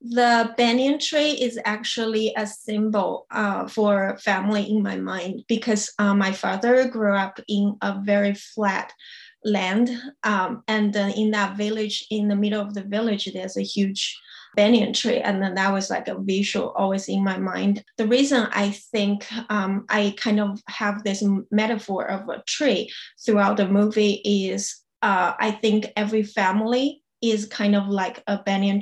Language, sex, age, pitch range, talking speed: English, female, 20-39, 200-225 Hz, 170 wpm